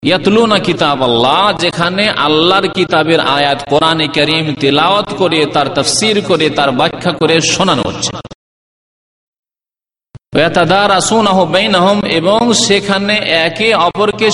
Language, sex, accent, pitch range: Bengali, male, native, 140-200 Hz